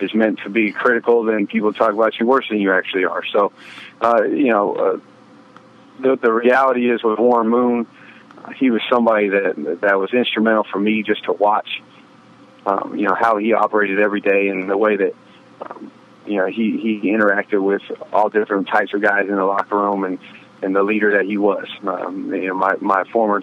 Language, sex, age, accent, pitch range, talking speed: English, male, 30-49, American, 100-120 Hz, 205 wpm